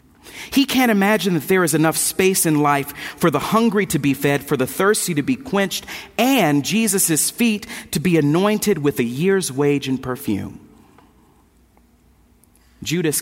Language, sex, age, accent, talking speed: English, male, 40-59, American, 160 wpm